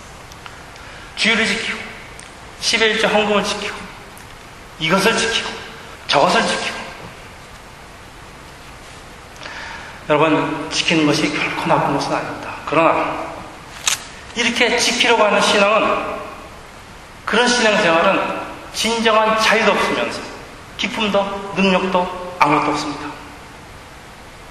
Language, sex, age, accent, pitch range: Korean, male, 40-59, native, 145-205 Hz